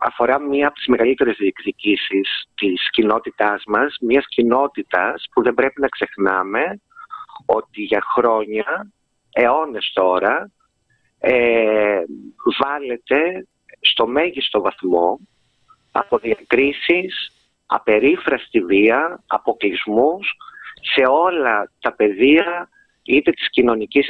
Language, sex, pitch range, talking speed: Greek, male, 115-170 Hz, 90 wpm